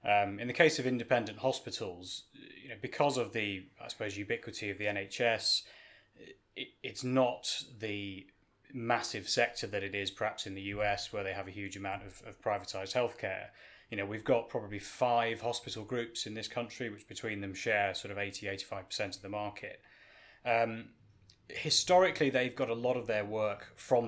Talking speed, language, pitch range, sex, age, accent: 180 wpm, English, 100-120 Hz, male, 20-39, British